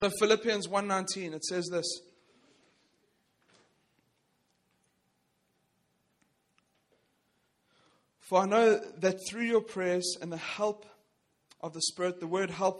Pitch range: 160-190 Hz